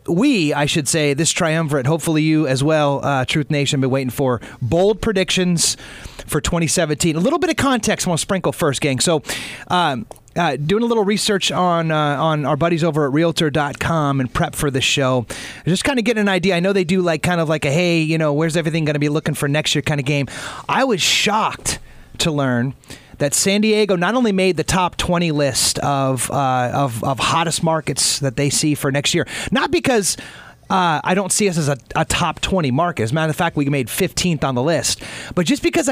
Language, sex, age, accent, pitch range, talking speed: English, male, 30-49, American, 145-195 Hz, 225 wpm